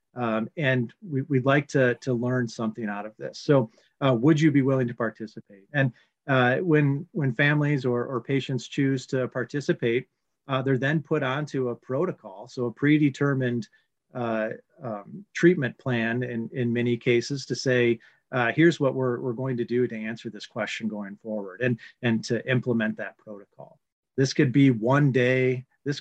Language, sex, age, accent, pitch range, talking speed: English, male, 40-59, American, 115-135 Hz, 175 wpm